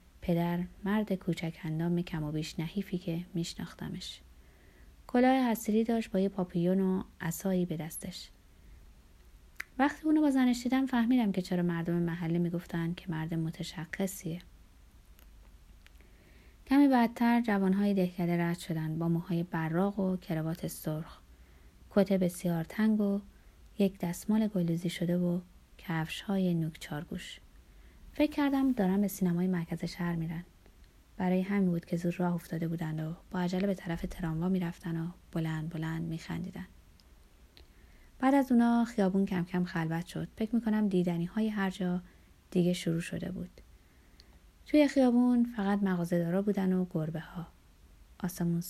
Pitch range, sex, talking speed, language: 160-195 Hz, female, 135 wpm, Persian